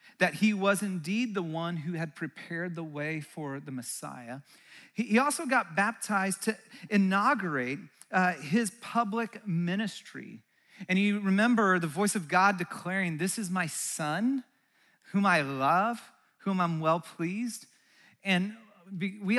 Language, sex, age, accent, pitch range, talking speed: English, male, 40-59, American, 165-210 Hz, 140 wpm